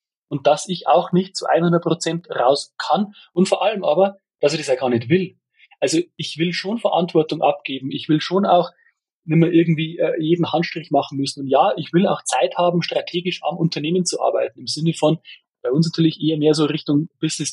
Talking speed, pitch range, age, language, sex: 205 wpm, 145-185 Hz, 30-49, German, male